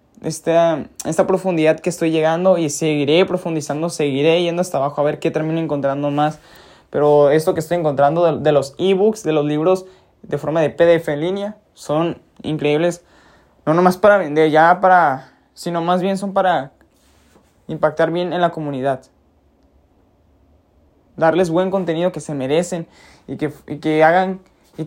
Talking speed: 160 wpm